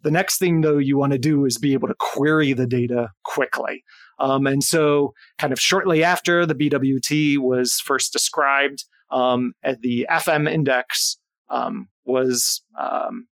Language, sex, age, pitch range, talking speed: English, male, 30-49, 130-155 Hz, 160 wpm